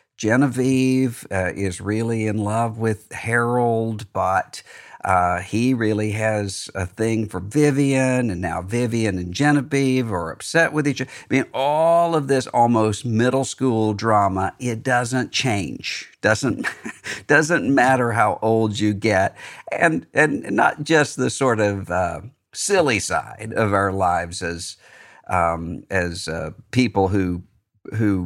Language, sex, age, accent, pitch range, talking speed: English, male, 50-69, American, 100-130 Hz, 140 wpm